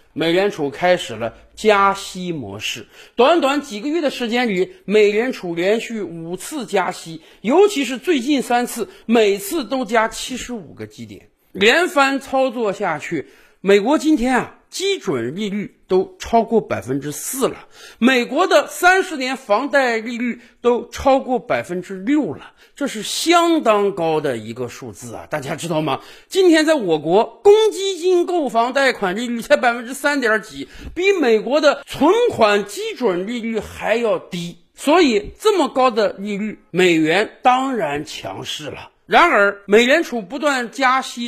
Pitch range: 190-295 Hz